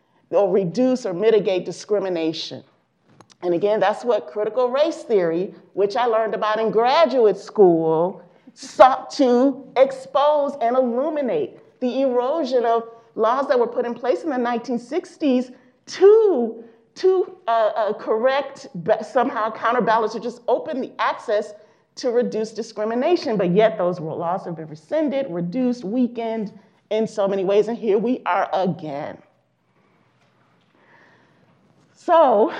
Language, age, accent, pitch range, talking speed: English, 40-59, American, 180-255 Hz, 130 wpm